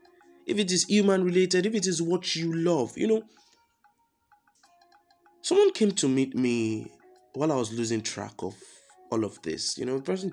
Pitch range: 135-205 Hz